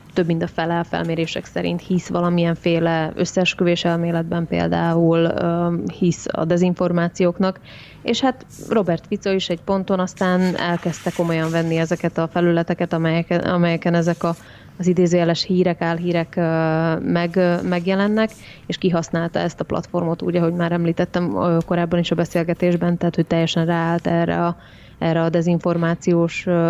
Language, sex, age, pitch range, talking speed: Hungarian, female, 20-39, 165-180 Hz, 135 wpm